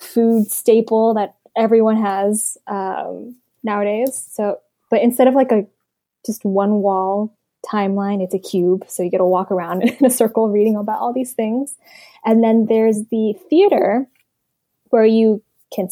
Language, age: English, 10-29